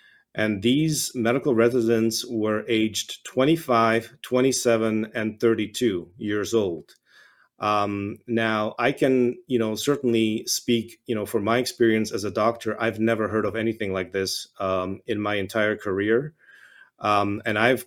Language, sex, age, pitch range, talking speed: English, male, 40-59, 105-120 Hz, 145 wpm